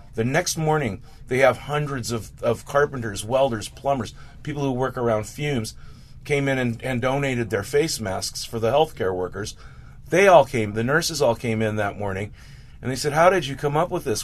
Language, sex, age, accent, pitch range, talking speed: English, male, 40-59, American, 110-135 Hz, 200 wpm